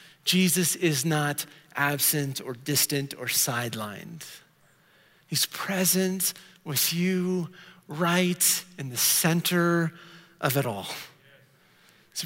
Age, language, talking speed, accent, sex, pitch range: 40-59, English, 100 wpm, American, male, 145-180 Hz